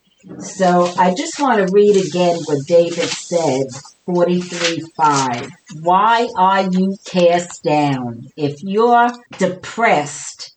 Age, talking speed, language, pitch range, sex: 50-69, 110 wpm, English, 170-230 Hz, female